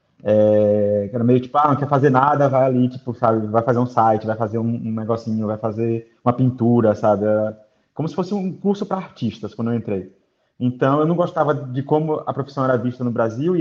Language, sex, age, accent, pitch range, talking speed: Portuguese, male, 20-39, Brazilian, 120-140 Hz, 220 wpm